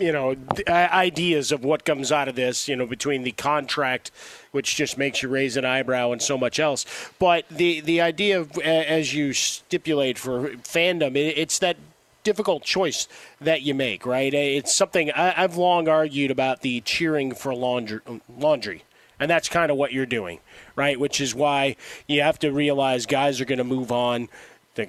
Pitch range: 130-155 Hz